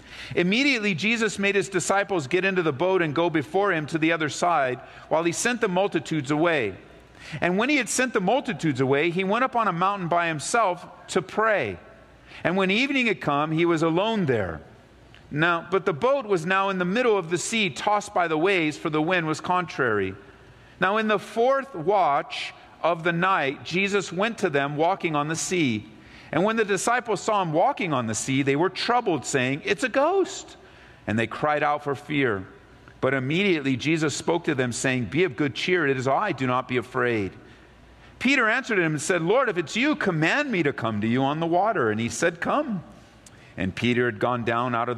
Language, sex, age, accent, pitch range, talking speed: English, male, 50-69, American, 135-195 Hz, 210 wpm